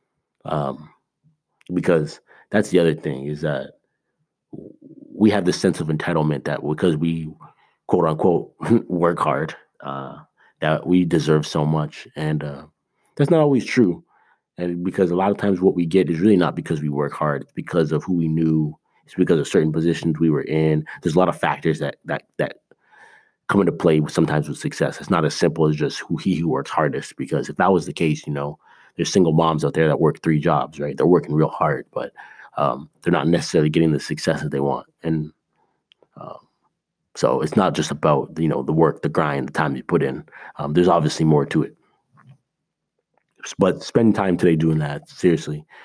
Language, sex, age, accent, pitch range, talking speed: English, male, 30-49, American, 75-85 Hz, 200 wpm